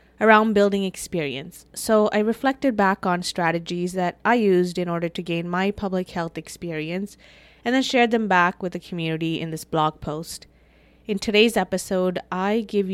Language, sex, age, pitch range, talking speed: English, female, 20-39, 170-215 Hz, 170 wpm